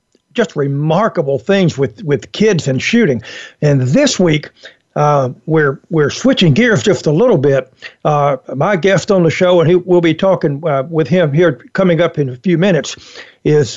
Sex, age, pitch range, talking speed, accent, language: male, 60-79, 145-185 Hz, 185 wpm, American, English